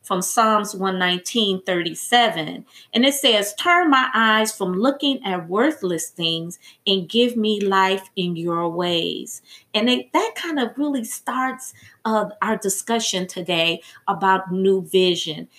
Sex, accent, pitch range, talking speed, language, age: female, American, 185-245 Hz, 135 wpm, English, 30-49